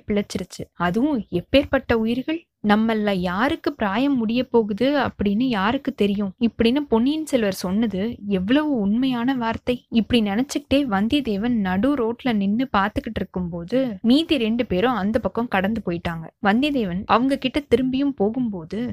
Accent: native